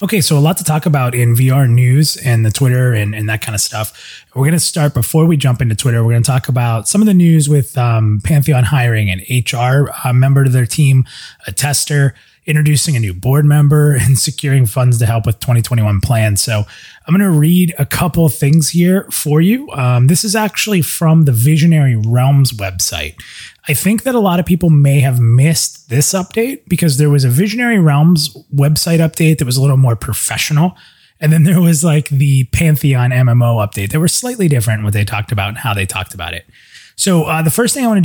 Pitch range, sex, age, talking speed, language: 115-160 Hz, male, 30-49, 220 wpm, English